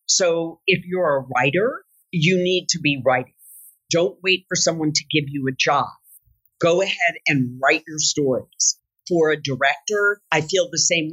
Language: English